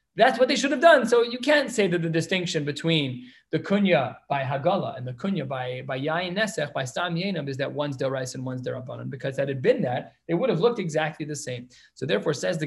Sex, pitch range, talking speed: male, 150-215 Hz, 255 wpm